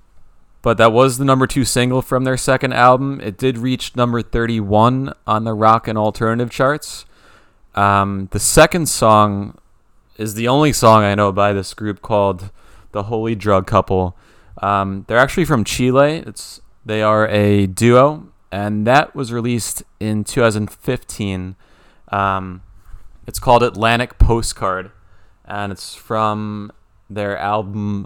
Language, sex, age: English, male, 20-39